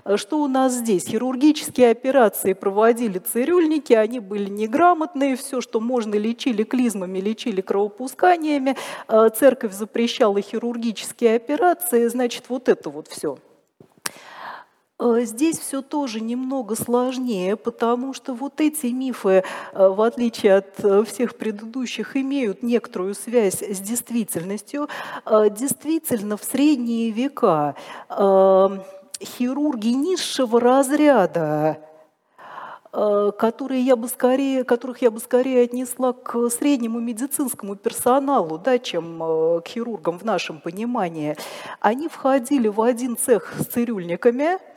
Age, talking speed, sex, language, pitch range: 40-59, 105 wpm, female, Russian, 210-265 Hz